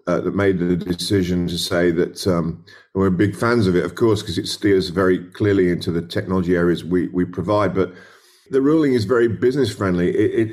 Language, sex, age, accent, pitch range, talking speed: English, male, 50-69, British, 90-110 Hz, 210 wpm